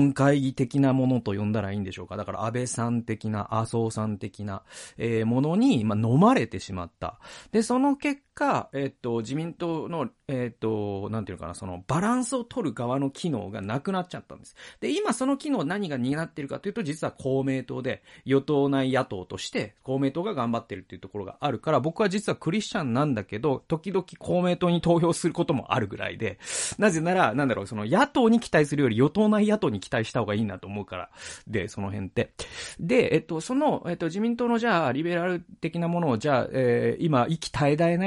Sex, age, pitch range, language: male, 40-59, 110-185 Hz, Japanese